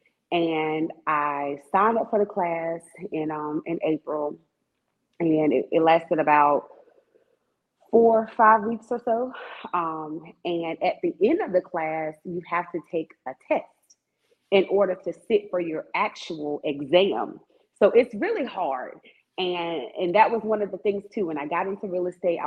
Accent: American